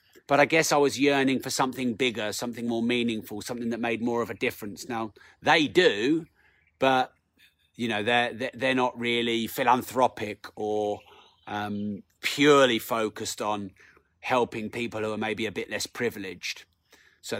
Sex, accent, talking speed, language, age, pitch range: male, British, 155 wpm, English, 30-49, 110-130 Hz